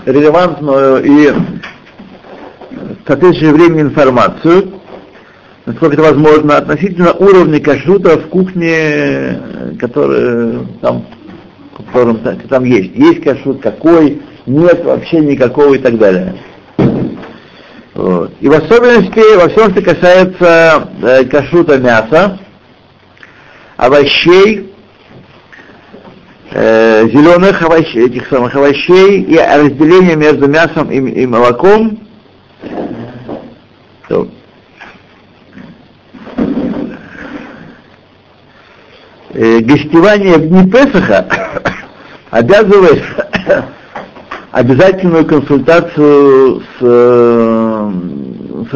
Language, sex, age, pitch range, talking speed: Russian, male, 60-79, 130-185 Hz, 75 wpm